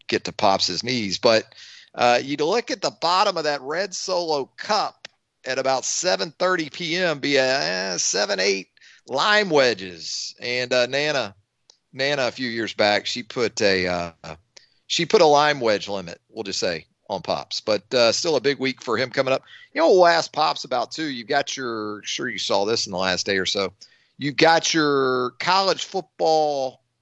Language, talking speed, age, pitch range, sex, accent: English, 195 wpm, 40-59, 115-155 Hz, male, American